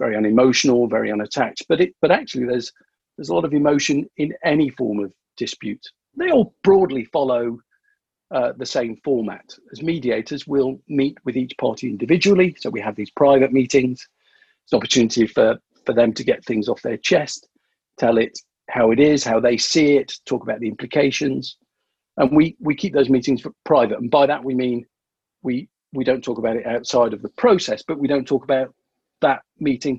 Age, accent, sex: 50-69, British, male